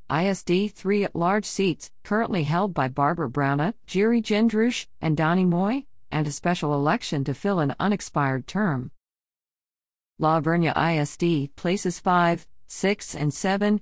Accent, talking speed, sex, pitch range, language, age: American, 140 wpm, female, 150-210 Hz, English, 50-69